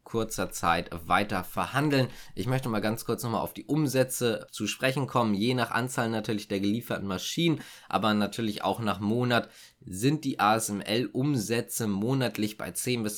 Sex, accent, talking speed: male, German, 165 wpm